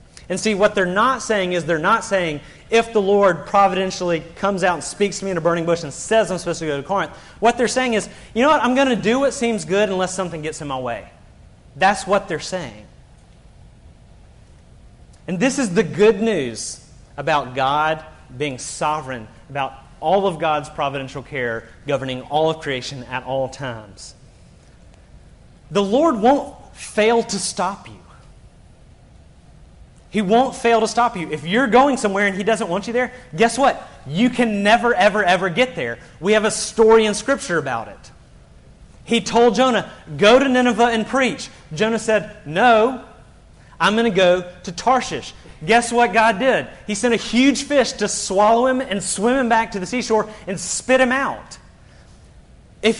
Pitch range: 155-235 Hz